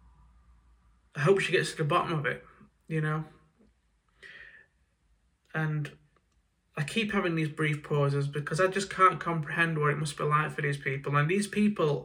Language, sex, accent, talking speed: English, male, British, 170 wpm